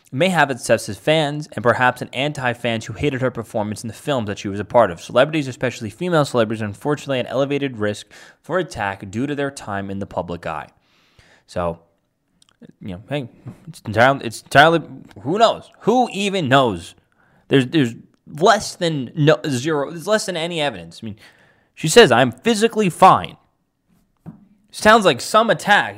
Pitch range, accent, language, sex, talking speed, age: 115-165 Hz, American, English, male, 175 wpm, 20-39